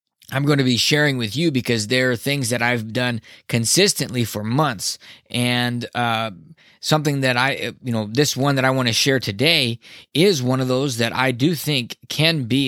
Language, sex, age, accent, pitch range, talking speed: English, male, 20-39, American, 120-145 Hz, 200 wpm